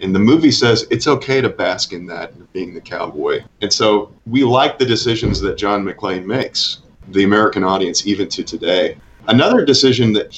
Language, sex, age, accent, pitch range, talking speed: English, male, 40-59, American, 100-125 Hz, 185 wpm